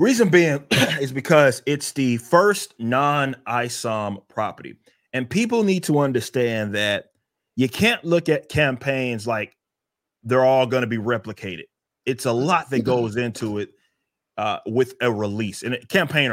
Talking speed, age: 150 wpm, 30-49